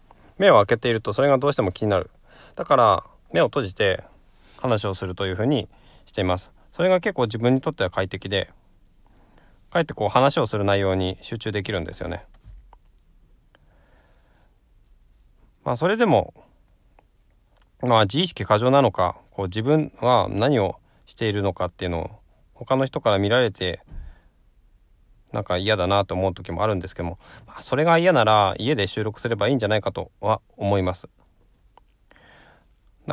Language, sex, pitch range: Japanese, male, 90-120 Hz